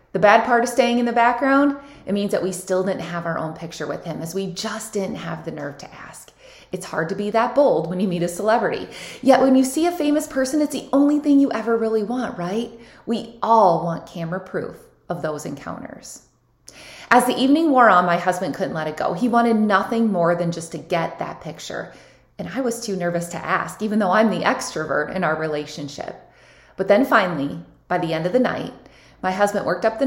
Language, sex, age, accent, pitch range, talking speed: English, female, 20-39, American, 175-255 Hz, 230 wpm